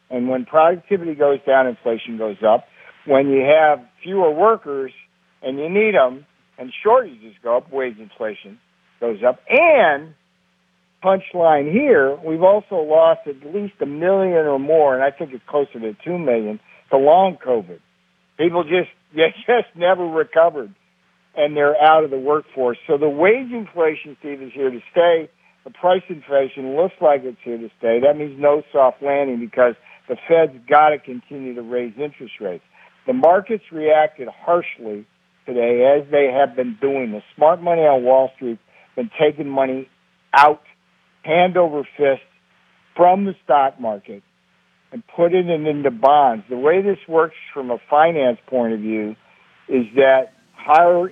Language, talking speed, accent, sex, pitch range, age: English, 160 wpm, American, male, 130-170 Hz, 60-79